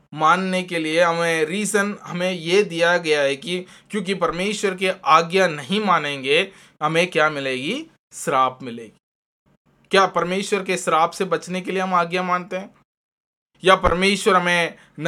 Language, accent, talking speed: Hindi, native, 145 wpm